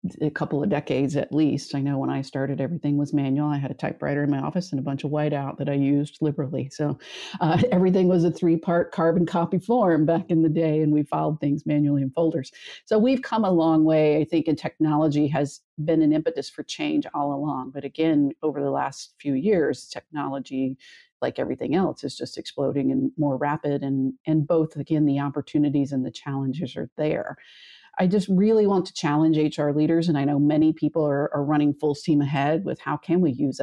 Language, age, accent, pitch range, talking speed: English, 50-69, American, 145-160 Hz, 215 wpm